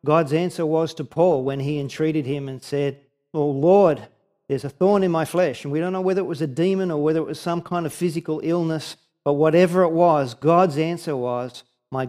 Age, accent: 40-59, Australian